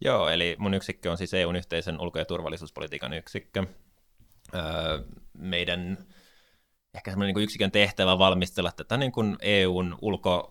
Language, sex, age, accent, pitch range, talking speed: Finnish, male, 20-39, native, 80-95 Hz, 150 wpm